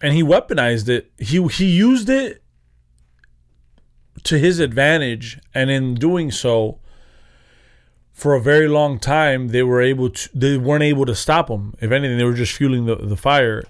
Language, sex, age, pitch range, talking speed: English, male, 30-49, 115-145 Hz, 170 wpm